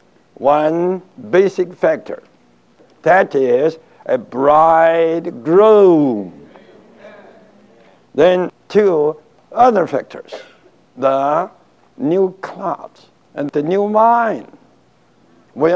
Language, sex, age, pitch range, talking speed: English, male, 60-79, 155-215 Hz, 70 wpm